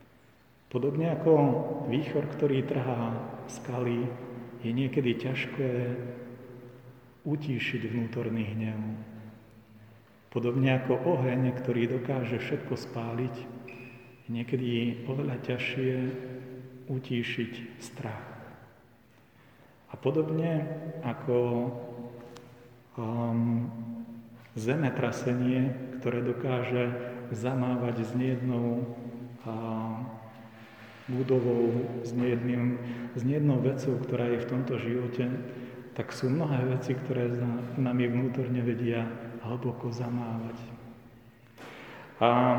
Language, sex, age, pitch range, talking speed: Slovak, male, 40-59, 120-130 Hz, 80 wpm